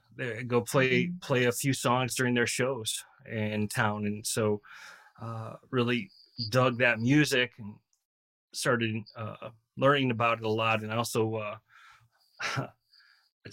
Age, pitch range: 30-49, 115-145 Hz